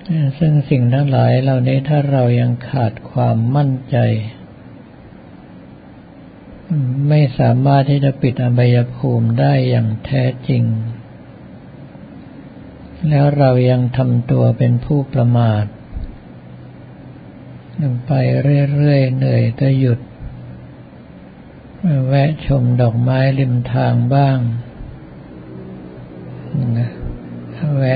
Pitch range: 120-140 Hz